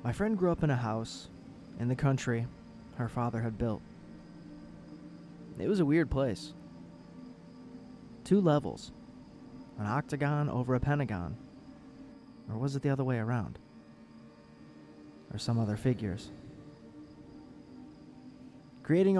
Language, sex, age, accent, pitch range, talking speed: English, male, 30-49, American, 115-140 Hz, 120 wpm